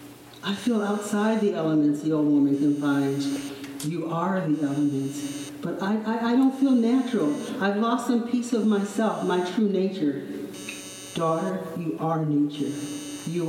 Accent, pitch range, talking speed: American, 155-200 Hz, 150 wpm